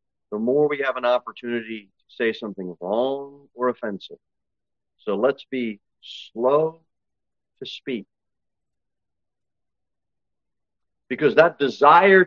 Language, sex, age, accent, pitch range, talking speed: English, male, 40-59, American, 115-160 Hz, 105 wpm